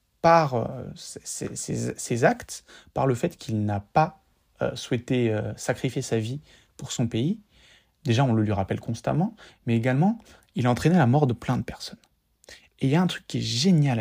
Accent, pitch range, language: French, 120-170 Hz, French